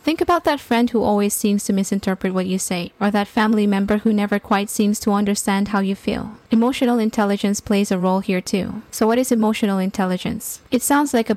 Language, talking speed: English, 215 wpm